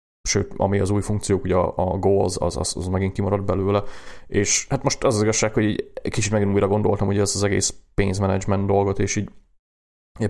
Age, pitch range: 30-49, 90-100 Hz